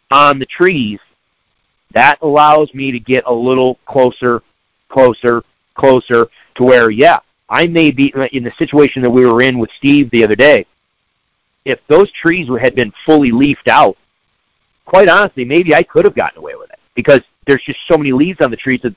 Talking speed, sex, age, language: 185 wpm, male, 50-69, English